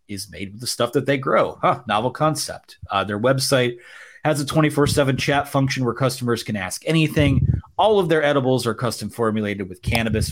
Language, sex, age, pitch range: English, male, 30-49, 110-135 Hz